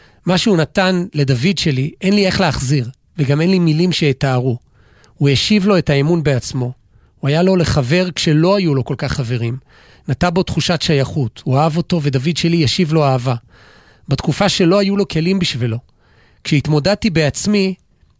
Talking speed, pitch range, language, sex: 165 wpm, 135-175 Hz, Hebrew, male